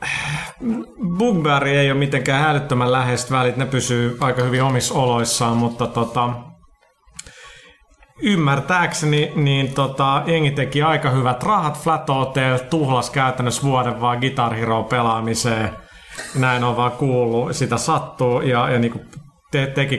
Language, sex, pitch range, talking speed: Finnish, male, 115-140 Hz, 125 wpm